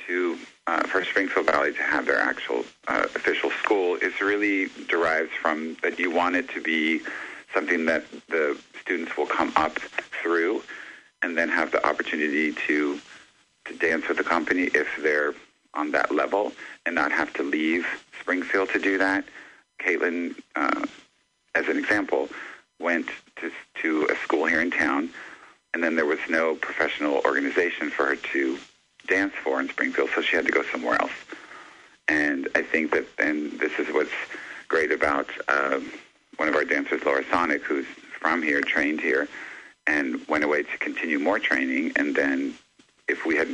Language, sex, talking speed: English, male, 170 wpm